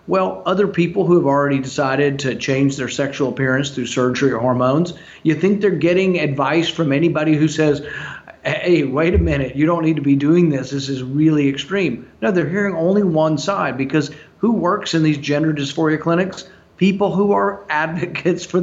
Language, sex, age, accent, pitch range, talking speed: English, male, 40-59, American, 140-175 Hz, 190 wpm